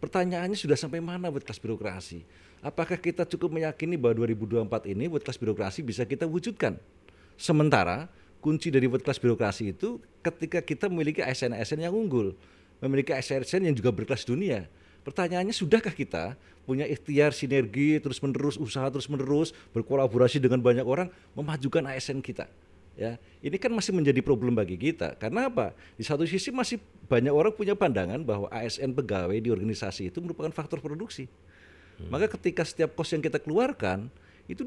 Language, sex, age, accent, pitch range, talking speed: English, male, 40-59, Indonesian, 110-160 Hz, 160 wpm